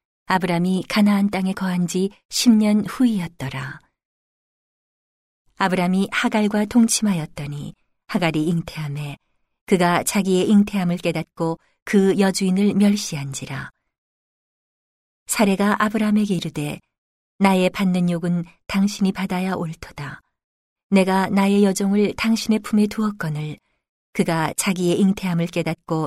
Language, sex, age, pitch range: Korean, female, 40-59, 160-205 Hz